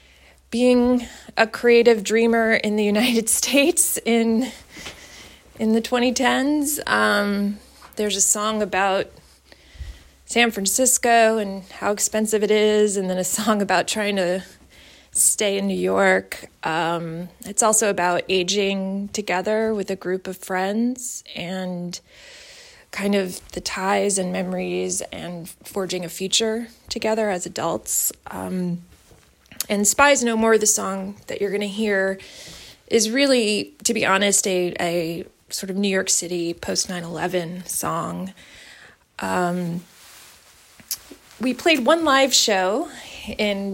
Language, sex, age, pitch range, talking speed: English, female, 20-39, 185-225 Hz, 130 wpm